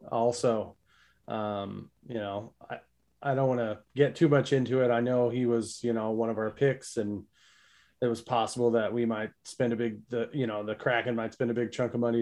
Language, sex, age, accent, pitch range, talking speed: English, male, 20-39, American, 105-120 Hz, 225 wpm